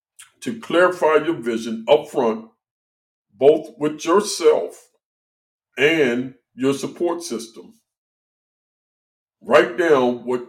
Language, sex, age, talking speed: English, male, 50-69, 85 wpm